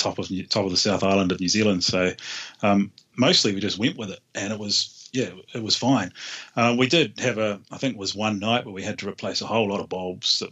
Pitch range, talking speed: 95-110 Hz, 260 wpm